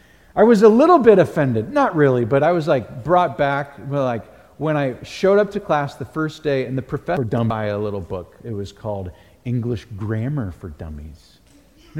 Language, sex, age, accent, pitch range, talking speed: English, male, 40-59, American, 130-210 Hz, 205 wpm